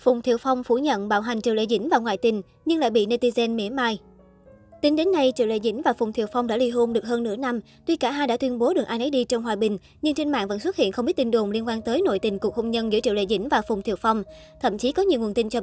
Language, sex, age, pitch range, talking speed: Vietnamese, male, 20-39, 225-260 Hz, 315 wpm